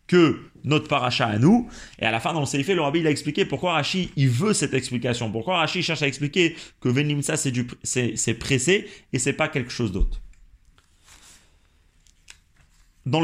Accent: French